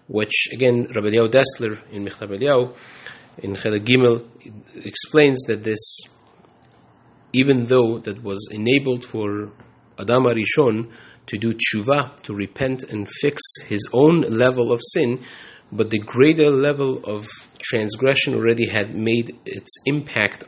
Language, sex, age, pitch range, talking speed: English, male, 30-49, 105-130 Hz, 130 wpm